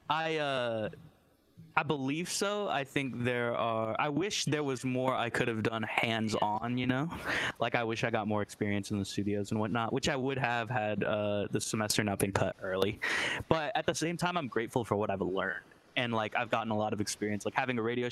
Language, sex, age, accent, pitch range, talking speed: English, male, 20-39, American, 105-125 Hz, 225 wpm